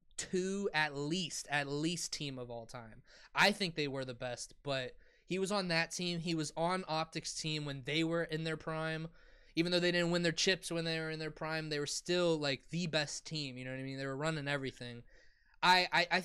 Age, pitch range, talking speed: 20-39, 140-170 Hz, 235 wpm